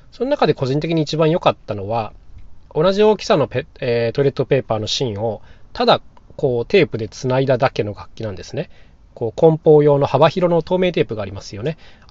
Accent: native